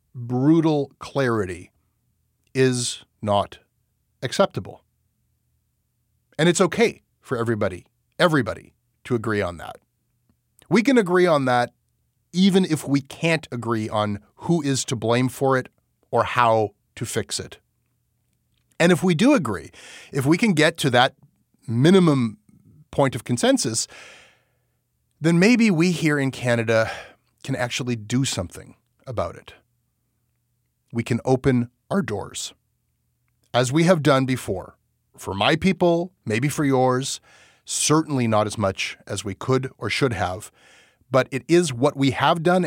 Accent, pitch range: American, 115-140 Hz